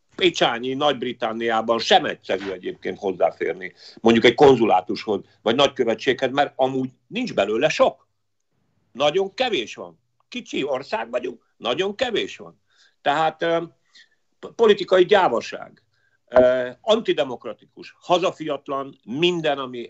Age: 50-69